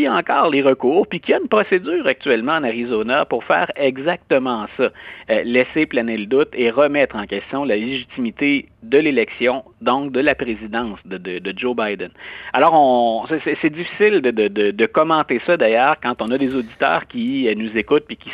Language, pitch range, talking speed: French, 115-170 Hz, 185 wpm